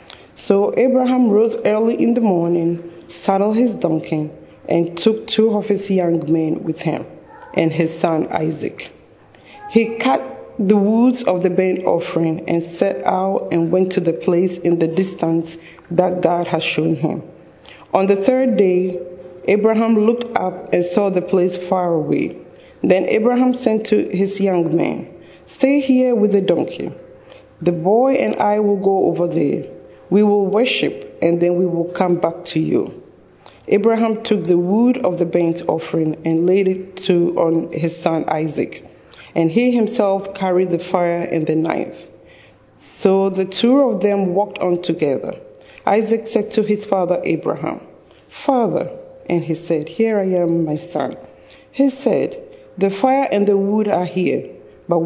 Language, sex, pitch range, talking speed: English, female, 170-215 Hz, 160 wpm